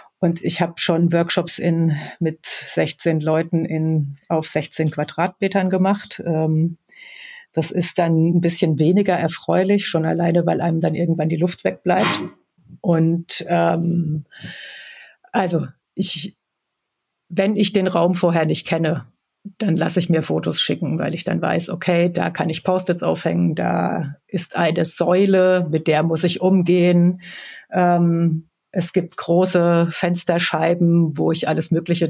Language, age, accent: German, 50-69, German